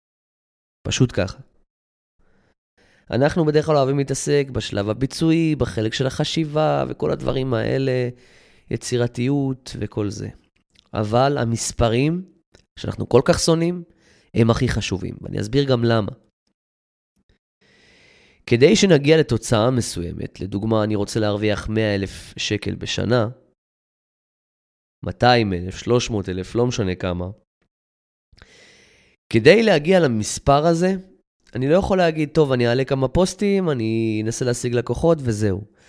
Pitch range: 105-140 Hz